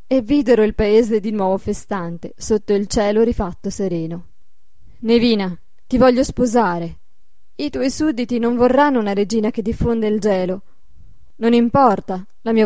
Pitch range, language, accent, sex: 205-255 Hz, Italian, native, female